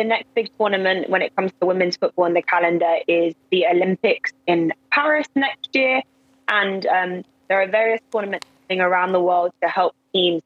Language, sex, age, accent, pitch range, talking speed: English, female, 20-39, British, 175-215 Hz, 185 wpm